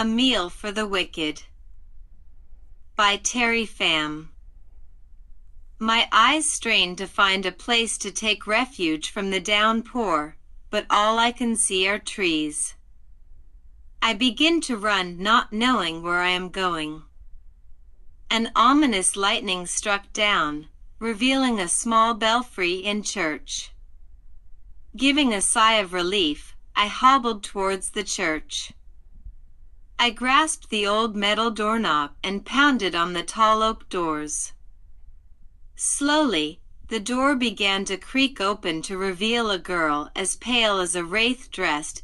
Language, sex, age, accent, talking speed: English, female, 40-59, American, 125 wpm